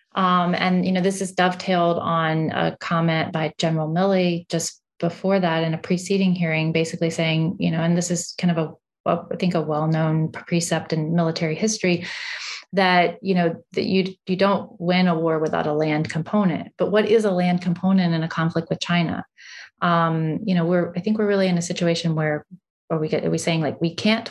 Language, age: English, 30-49